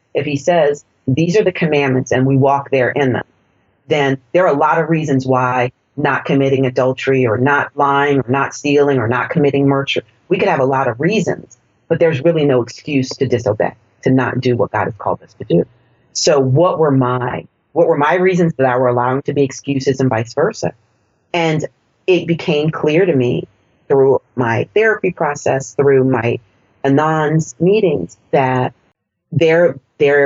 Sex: female